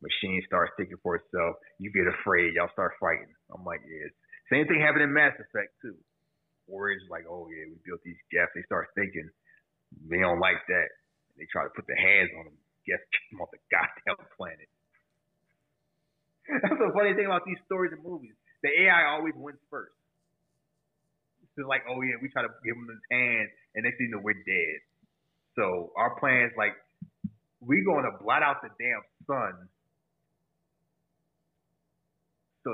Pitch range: 110-160 Hz